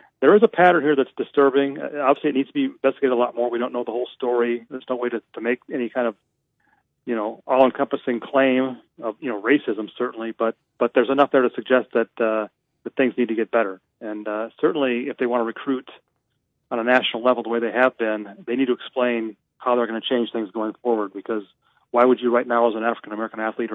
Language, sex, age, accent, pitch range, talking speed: English, male, 40-59, American, 115-130 Hz, 240 wpm